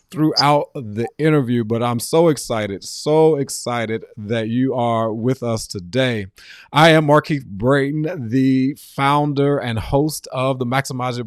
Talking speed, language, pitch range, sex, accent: 140 wpm, English, 115-150 Hz, male, American